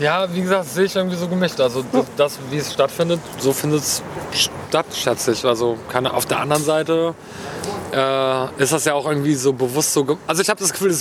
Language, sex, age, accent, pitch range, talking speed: German, male, 30-49, German, 135-160 Hz, 230 wpm